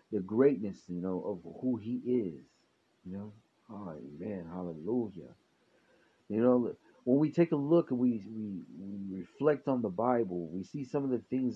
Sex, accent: male, American